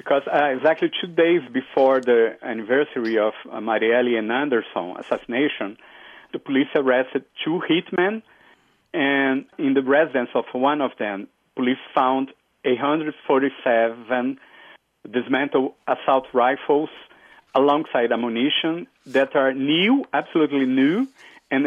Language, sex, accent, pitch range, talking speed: English, male, Brazilian, 125-160 Hz, 115 wpm